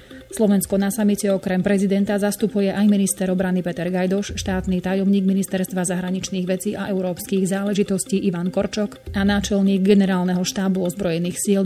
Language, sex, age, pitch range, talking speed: Slovak, female, 30-49, 180-200 Hz, 140 wpm